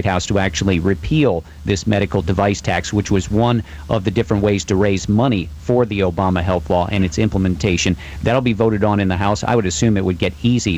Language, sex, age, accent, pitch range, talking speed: English, male, 50-69, American, 90-110 Hz, 225 wpm